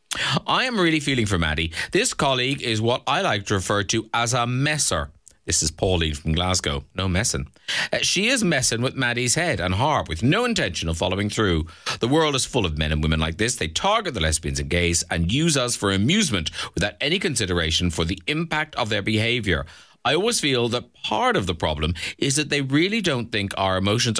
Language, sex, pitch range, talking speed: English, male, 85-140 Hz, 210 wpm